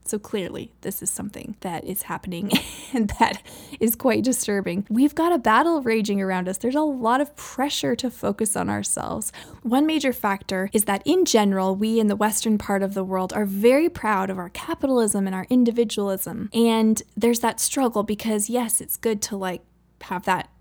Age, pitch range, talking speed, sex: 10-29, 195-245 Hz, 190 wpm, female